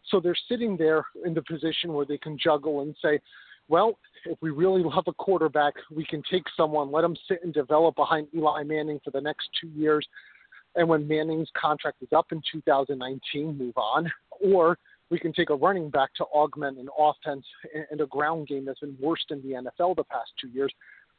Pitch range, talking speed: 140-165 Hz, 205 wpm